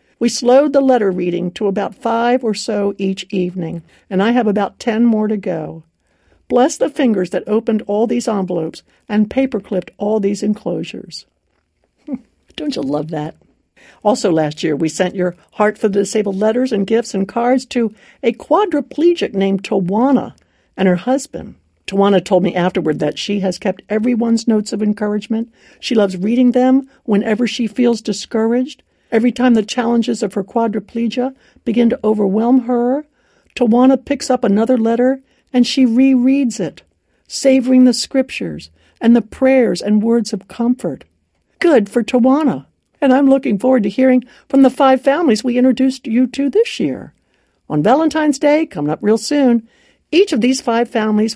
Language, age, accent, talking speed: English, 60-79, American, 165 wpm